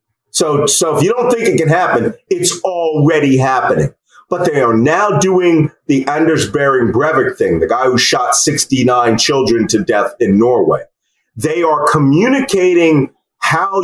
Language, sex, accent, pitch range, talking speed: English, male, American, 125-165 Hz, 155 wpm